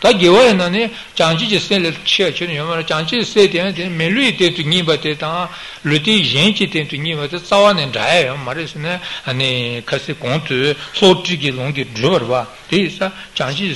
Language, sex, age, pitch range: Italian, male, 60-79, 150-190 Hz